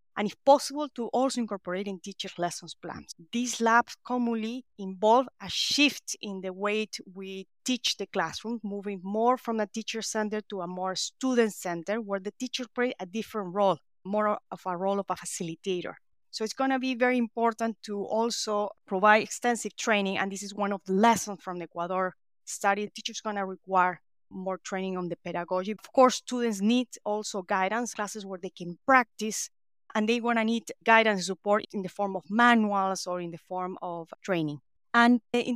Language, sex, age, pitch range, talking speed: English, female, 30-49, 190-230 Hz, 190 wpm